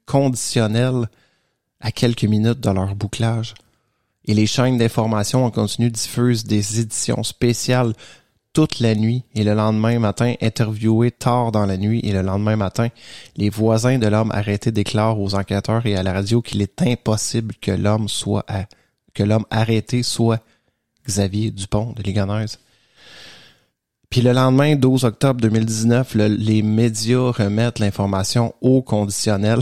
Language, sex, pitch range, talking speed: English, male, 105-120 Hz, 150 wpm